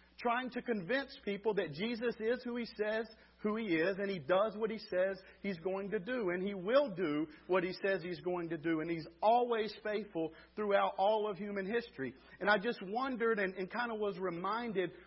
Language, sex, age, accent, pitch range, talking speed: English, male, 50-69, American, 185-235 Hz, 210 wpm